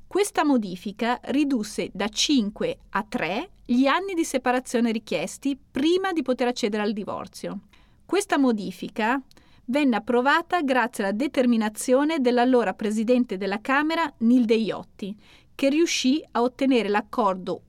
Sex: female